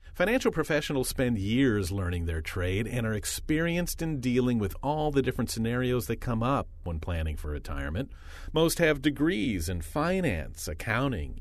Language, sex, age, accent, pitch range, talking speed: English, male, 40-59, American, 85-135 Hz, 160 wpm